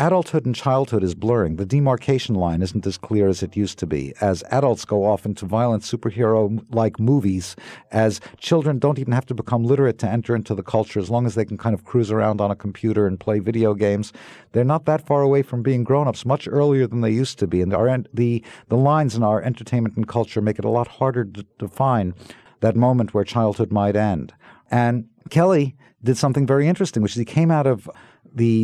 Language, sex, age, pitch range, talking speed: English, male, 50-69, 105-130 Hz, 220 wpm